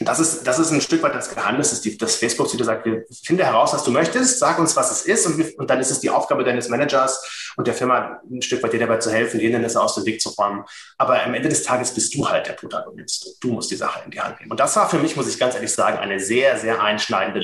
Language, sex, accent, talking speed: German, male, German, 285 wpm